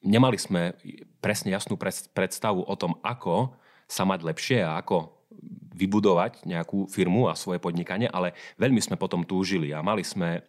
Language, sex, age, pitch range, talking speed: Slovak, male, 30-49, 80-90 Hz, 155 wpm